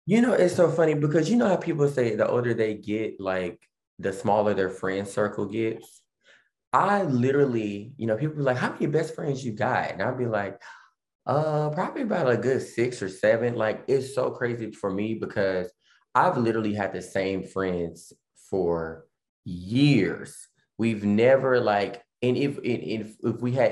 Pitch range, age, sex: 90-120 Hz, 20-39, male